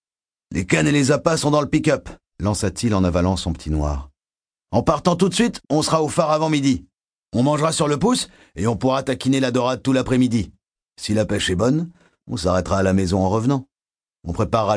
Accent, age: French, 50-69